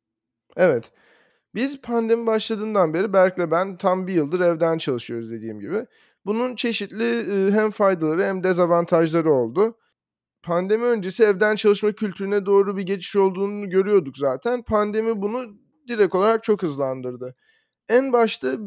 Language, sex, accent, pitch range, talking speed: Turkish, male, native, 165-210 Hz, 130 wpm